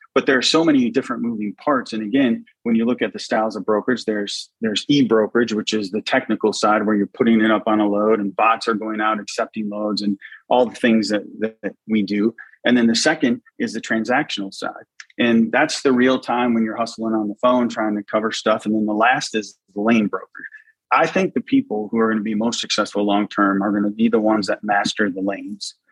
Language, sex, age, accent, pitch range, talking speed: English, male, 30-49, American, 105-125 Hz, 235 wpm